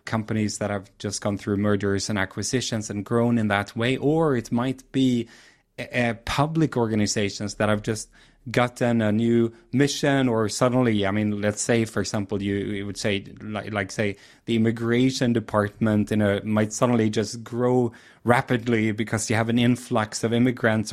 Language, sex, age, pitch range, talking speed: English, male, 30-49, 105-125 Hz, 165 wpm